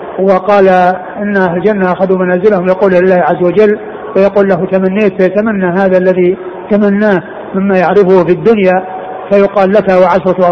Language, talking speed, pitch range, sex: Arabic, 135 wpm, 190-220 Hz, male